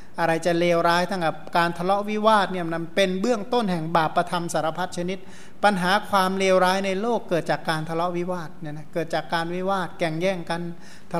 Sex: male